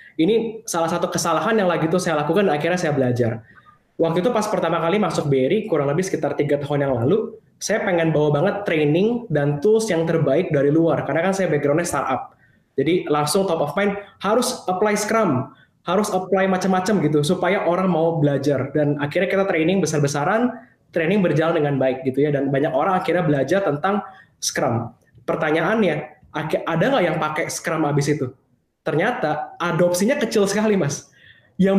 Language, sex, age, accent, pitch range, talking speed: Indonesian, male, 20-39, native, 150-200 Hz, 170 wpm